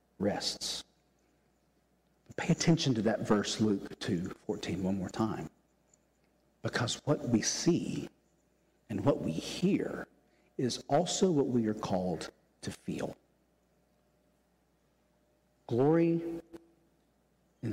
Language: English